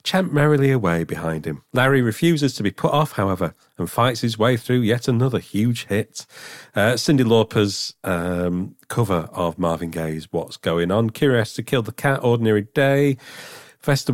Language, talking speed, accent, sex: English, 170 wpm, British, male